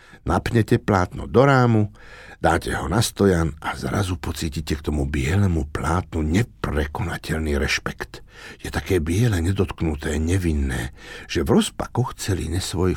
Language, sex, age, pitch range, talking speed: Slovak, male, 60-79, 80-105 Hz, 125 wpm